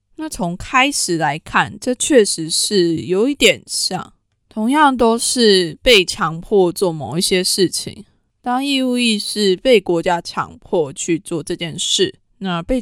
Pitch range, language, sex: 170-225 Hz, Chinese, female